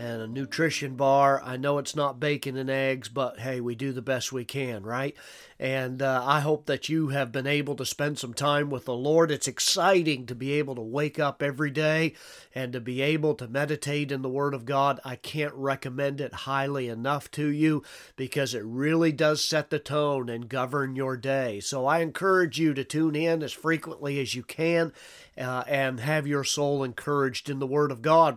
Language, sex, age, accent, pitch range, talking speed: English, male, 40-59, American, 135-155 Hz, 210 wpm